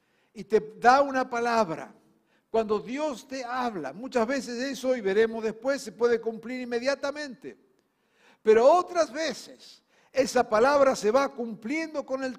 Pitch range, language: 230-280 Hz, Spanish